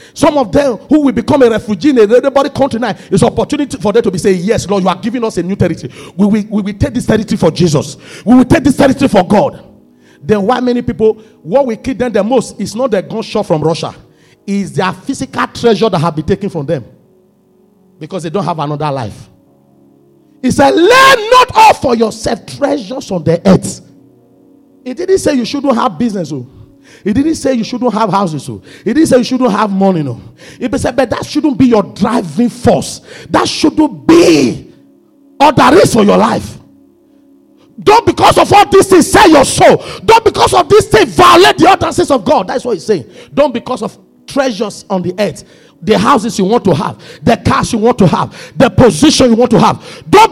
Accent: Nigerian